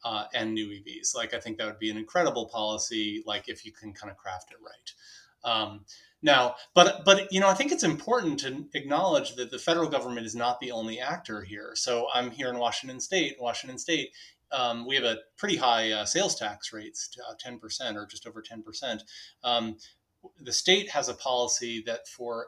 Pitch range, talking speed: 105-145 Hz, 205 wpm